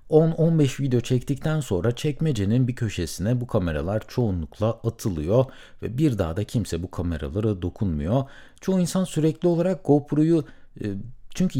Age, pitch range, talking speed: 60-79, 95-145 Hz, 130 wpm